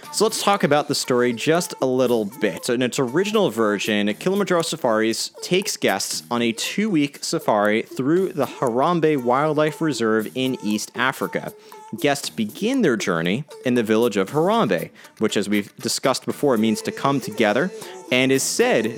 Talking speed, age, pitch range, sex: 165 wpm, 30-49, 105-140 Hz, male